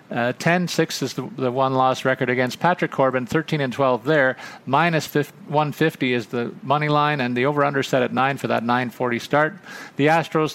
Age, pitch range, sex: 40-59, 125-155 Hz, male